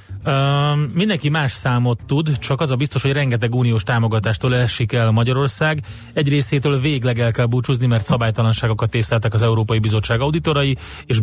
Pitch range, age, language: 105-125 Hz, 30-49, Hungarian